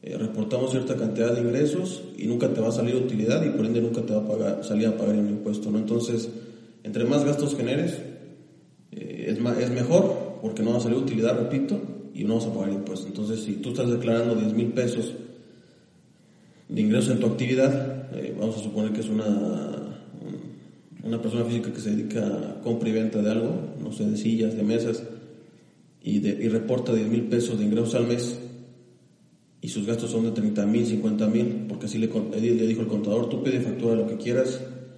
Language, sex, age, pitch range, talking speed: English, male, 30-49, 110-120 Hz, 205 wpm